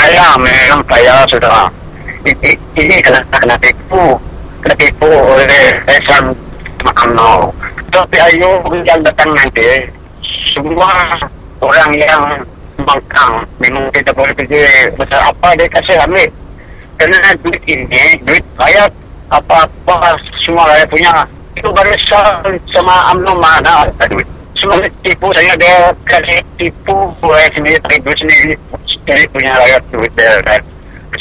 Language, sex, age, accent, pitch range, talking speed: English, male, 60-79, Indian, 140-180 Hz, 105 wpm